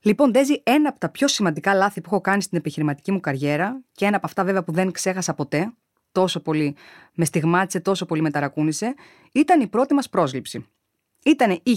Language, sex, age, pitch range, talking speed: Greek, female, 20-39, 175-280 Hz, 200 wpm